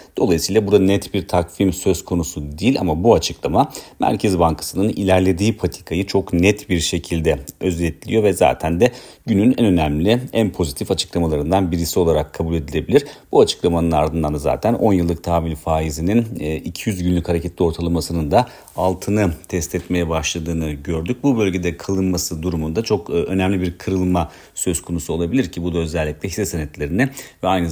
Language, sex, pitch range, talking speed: Turkish, male, 80-95 Hz, 150 wpm